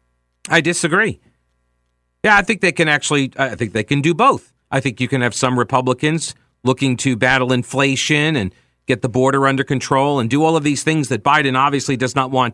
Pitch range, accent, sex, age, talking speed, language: 125-160 Hz, American, male, 40-59, 205 wpm, English